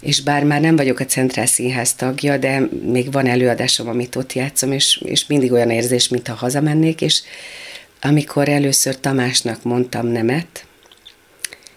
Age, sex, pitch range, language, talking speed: 40-59, female, 125-165 Hz, Hungarian, 150 wpm